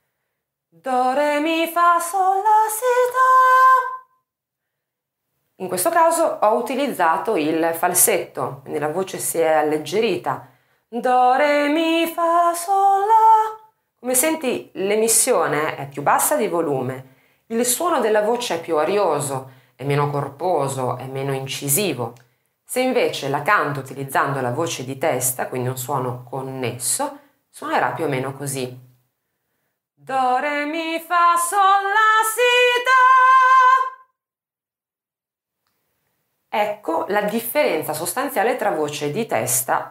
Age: 30-49